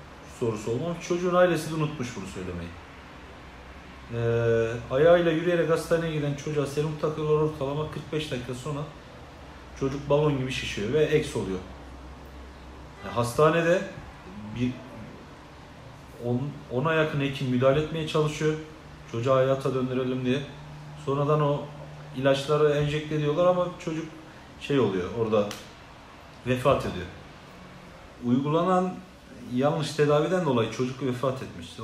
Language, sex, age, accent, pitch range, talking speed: Turkish, male, 40-59, native, 115-155 Hz, 115 wpm